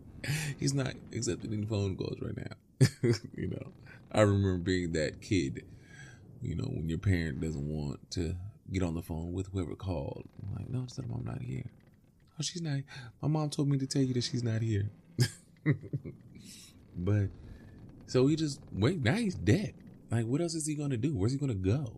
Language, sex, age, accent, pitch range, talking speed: English, male, 20-39, American, 95-125 Hz, 195 wpm